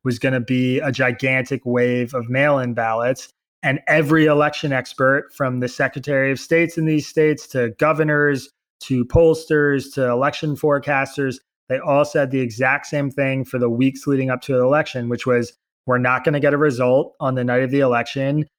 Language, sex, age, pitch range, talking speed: English, male, 20-39, 125-145 Hz, 185 wpm